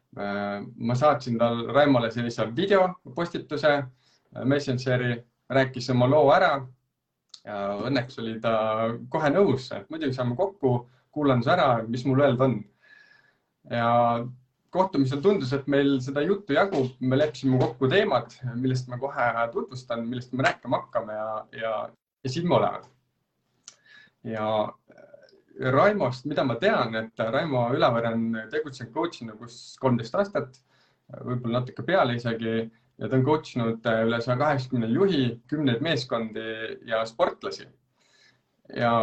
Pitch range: 115-140 Hz